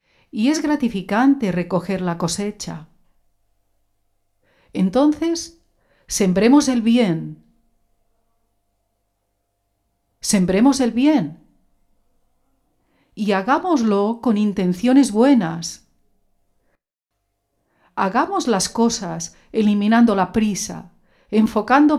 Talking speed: 70 wpm